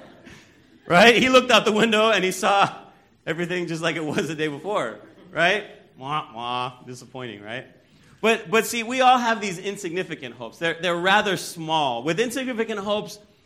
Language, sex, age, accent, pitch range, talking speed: English, male, 30-49, American, 140-210 Hz, 170 wpm